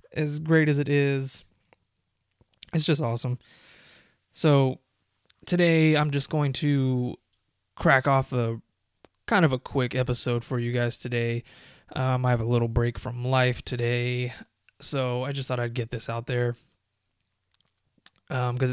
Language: English